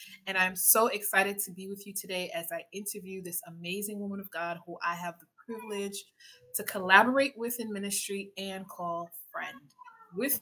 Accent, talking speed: American, 180 wpm